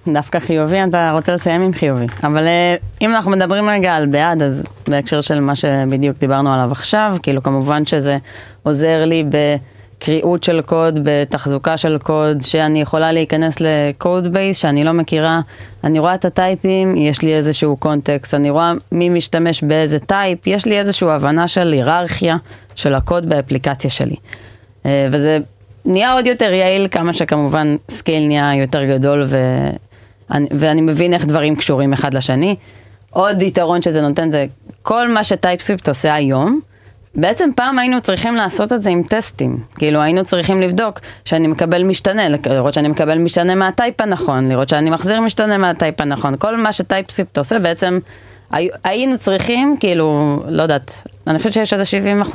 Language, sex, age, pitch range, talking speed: Hebrew, female, 20-39, 140-180 Hz, 155 wpm